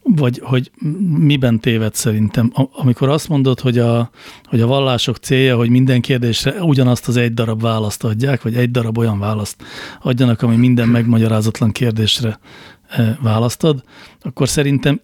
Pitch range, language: 115-130 Hz, Hungarian